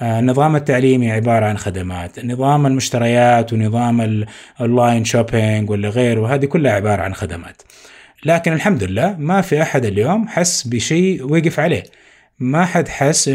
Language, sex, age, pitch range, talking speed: Arabic, male, 30-49, 115-155 Hz, 140 wpm